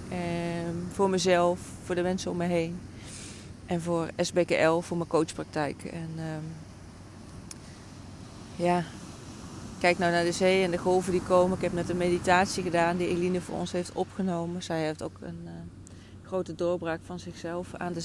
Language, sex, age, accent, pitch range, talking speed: Dutch, female, 30-49, Dutch, 155-180 Hz, 170 wpm